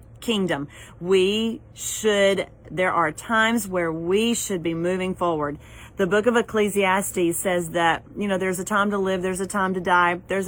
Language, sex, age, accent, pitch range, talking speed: English, female, 40-59, American, 180-215 Hz, 175 wpm